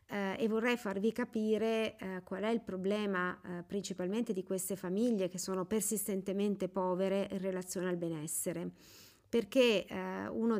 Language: Italian